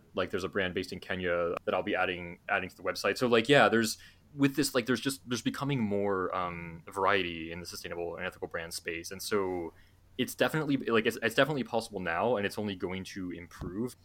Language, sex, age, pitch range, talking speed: English, male, 20-39, 90-115 Hz, 220 wpm